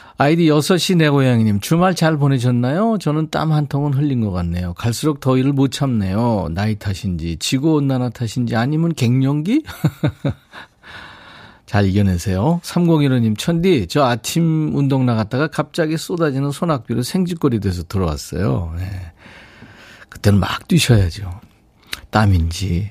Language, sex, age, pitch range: Korean, male, 40-59, 100-150 Hz